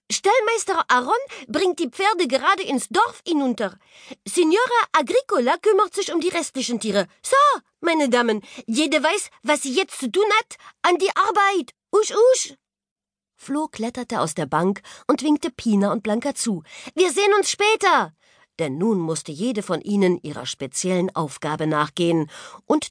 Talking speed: 155 wpm